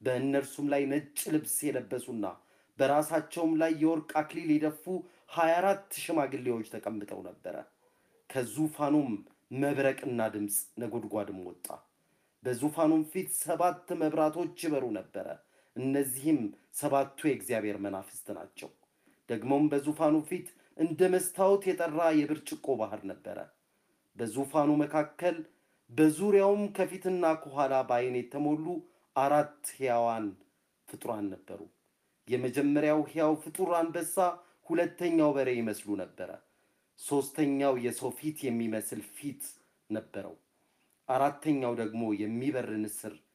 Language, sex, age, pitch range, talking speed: Amharic, male, 30-49, 130-170 Hz, 95 wpm